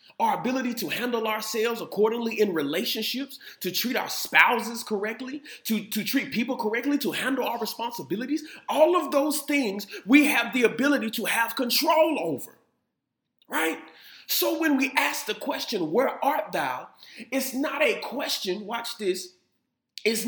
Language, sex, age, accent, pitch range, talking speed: English, male, 30-49, American, 200-280 Hz, 150 wpm